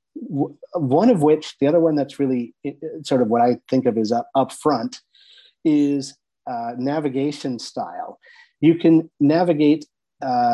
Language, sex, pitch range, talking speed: English, male, 125-155 Hz, 140 wpm